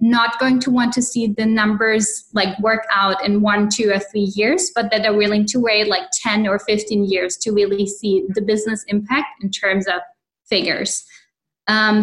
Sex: female